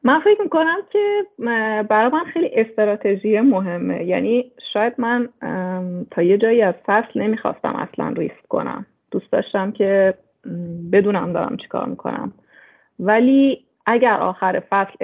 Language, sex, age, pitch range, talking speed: Persian, female, 30-49, 195-240 Hz, 130 wpm